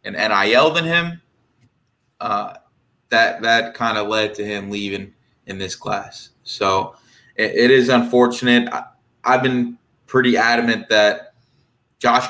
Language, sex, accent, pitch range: English, male, American, 110-125 Hz